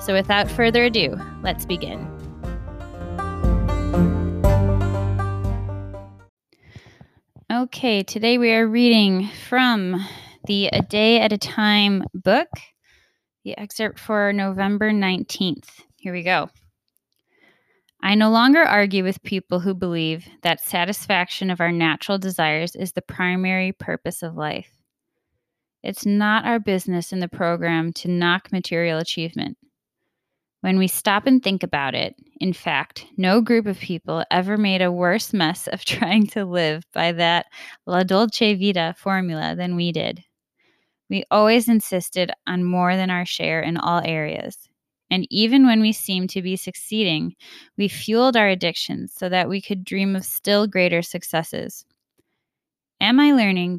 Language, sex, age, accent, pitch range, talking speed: English, female, 20-39, American, 170-210 Hz, 140 wpm